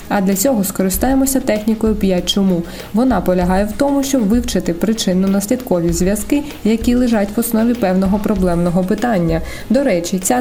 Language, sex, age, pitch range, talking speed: Ukrainian, female, 20-39, 195-235 Hz, 145 wpm